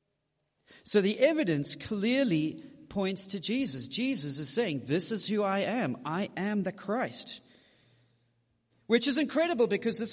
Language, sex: English, male